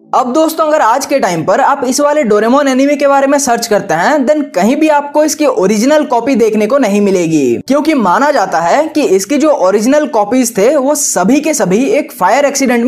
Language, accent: Hindi, native